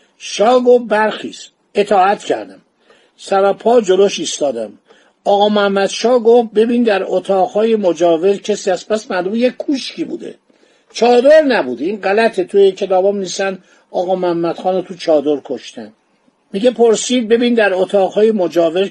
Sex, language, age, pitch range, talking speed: male, Persian, 50-69, 170-225 Hz, 125 wpm